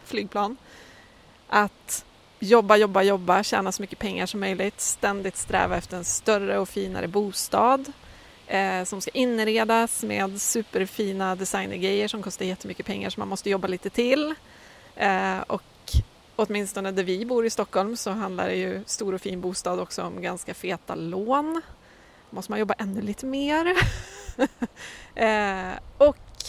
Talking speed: 140 wpm